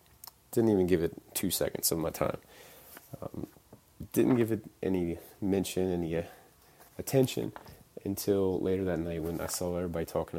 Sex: male